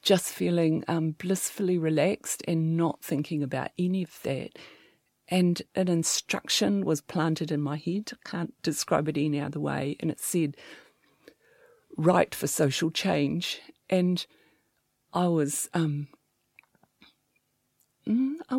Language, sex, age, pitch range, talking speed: English, female, 50-69, 155-185 Hz, 125 wpm